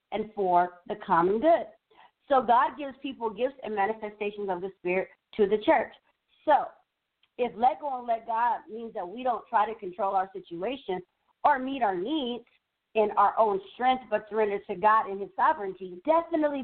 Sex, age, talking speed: female, 50-69, 180 wpm